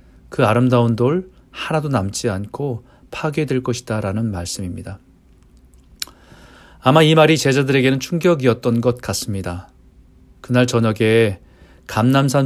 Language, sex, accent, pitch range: Korean, male, native, 95-130 Hz